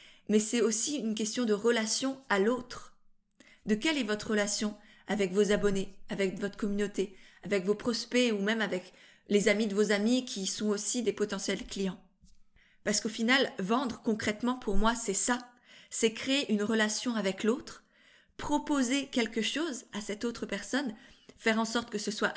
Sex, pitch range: female, 205-245 Hz